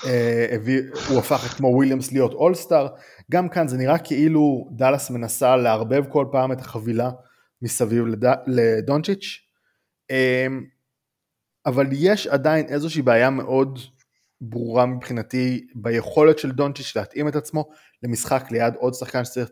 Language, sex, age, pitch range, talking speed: Hebrew, male, 20-39, 115-140 Hz, 125 wpm